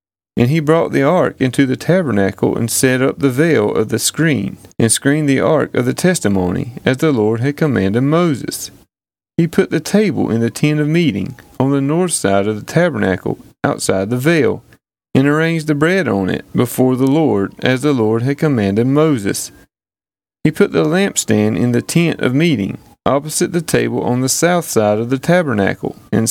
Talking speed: 190 wpm